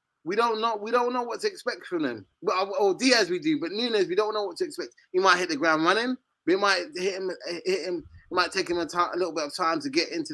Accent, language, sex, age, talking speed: British, English, male, 20-39, 285 wpm